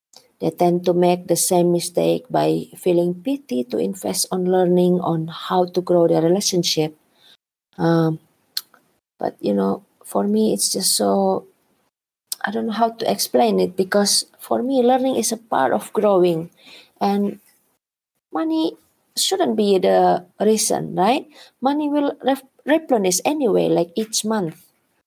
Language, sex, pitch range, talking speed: English, female, 165-225 Hz, 140 wpm